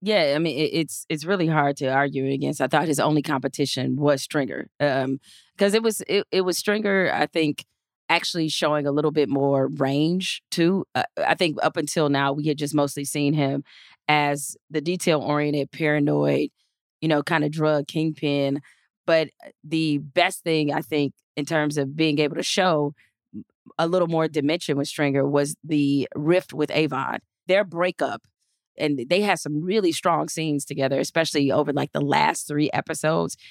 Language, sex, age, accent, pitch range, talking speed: English, female, 30-49, American, 140-165 Hz, 175 wpm